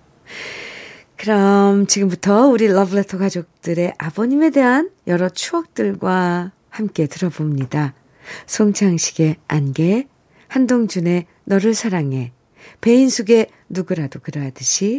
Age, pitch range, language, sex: 50-69, 155-225 Hz, Korean, female